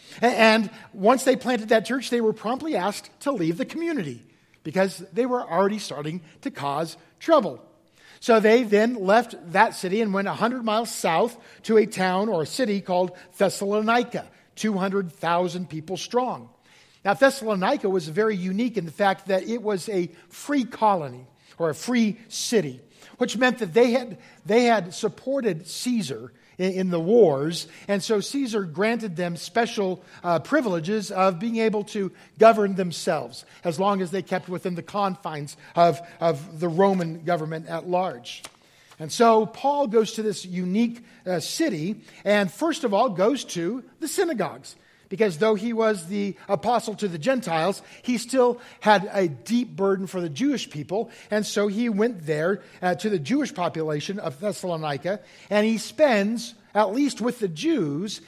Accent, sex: American, male